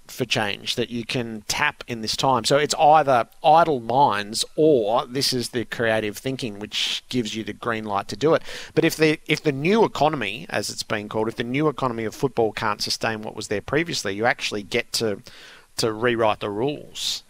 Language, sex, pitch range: English, male, 110-130 Hz